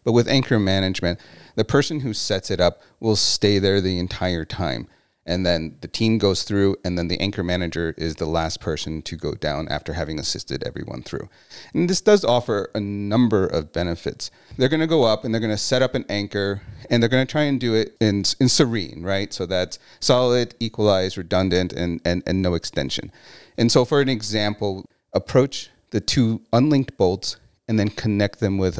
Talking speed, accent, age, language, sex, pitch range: 200 wpm, American, 40-59, English, male, 90-115 Hz